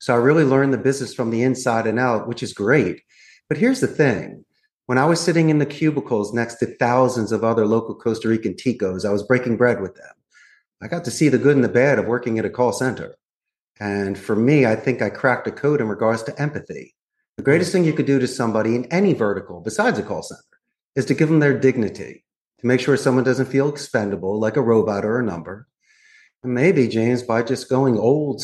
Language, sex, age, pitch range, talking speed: English, male, 40-59, 110-135 Hz, 230 wpm